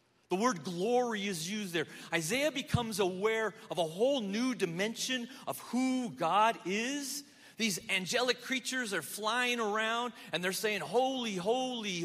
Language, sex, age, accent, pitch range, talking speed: English, male, 40-59, American, 190-255 Hz, 145 wpm